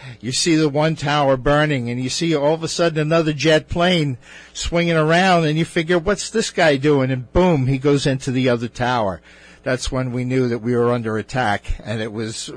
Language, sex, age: English, male, 50-69